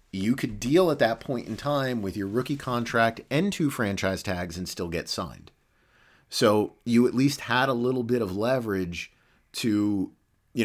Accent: American